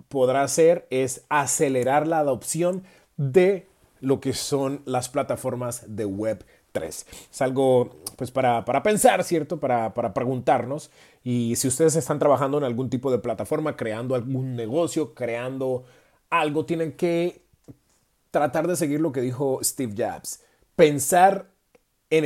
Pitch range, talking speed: 130-170 Hz, 140 wpm